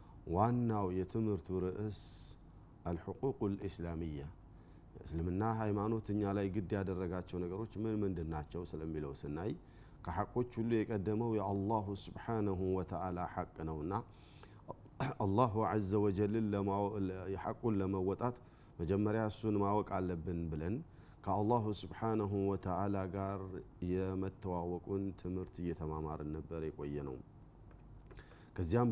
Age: 40-59